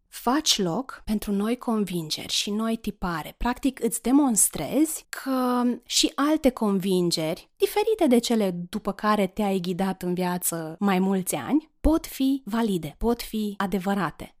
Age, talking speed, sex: 20-39, 140 wpm, female